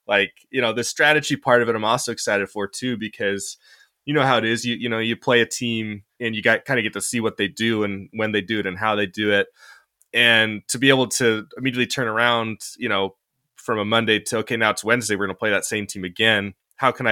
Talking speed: 260 wpm